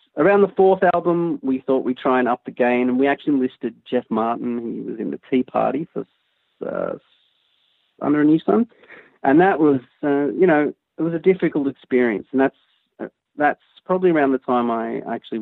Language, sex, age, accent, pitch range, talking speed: English, male, 30-49, Australian, 115-150 Hz, 200 wpm